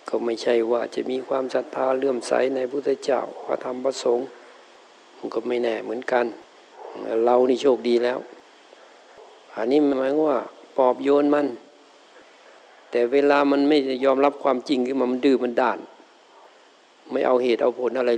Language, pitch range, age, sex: Thai, 125-140 Hz, 60-79, male